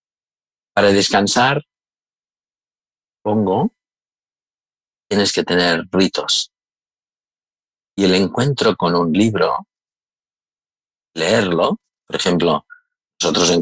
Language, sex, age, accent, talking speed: Spanish, male, 50-69, Spanish, 80 wpm